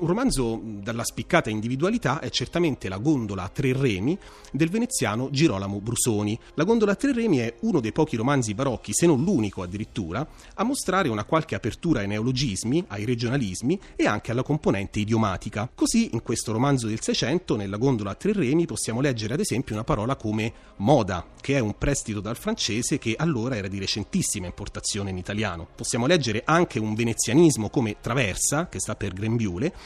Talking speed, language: 180 wpm, Italian